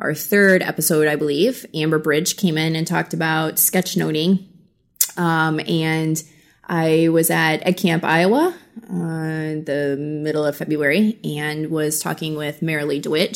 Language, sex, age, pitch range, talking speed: English, female, 20-39, 155-180 Hz, 150 wpm